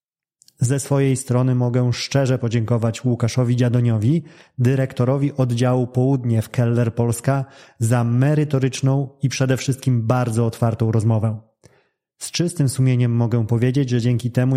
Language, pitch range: Polish, 120-135 Hz